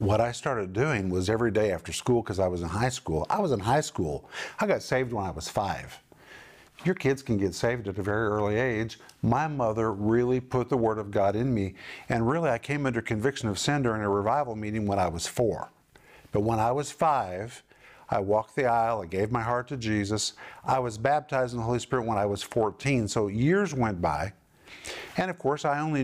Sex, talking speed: male, 225 wpm